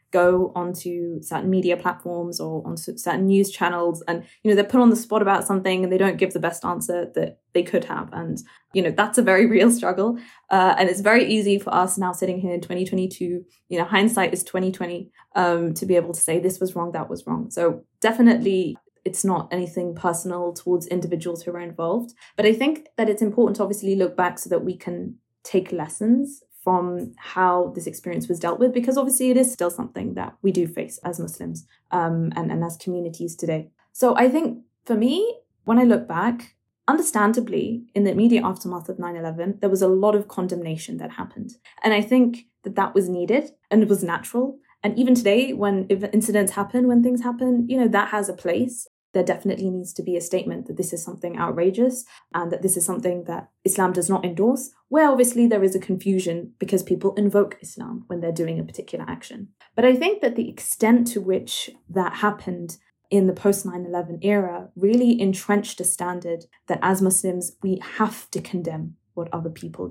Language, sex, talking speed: English, female, 205 wpm